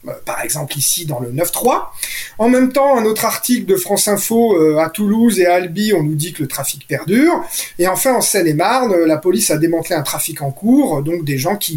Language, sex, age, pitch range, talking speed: French, male, 30-49, 150-205 Hz, 225 wpm